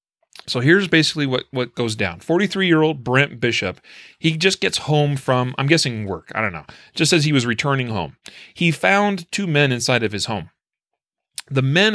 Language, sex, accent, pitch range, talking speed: English, male, American, 115-155 Hz, 185 wpm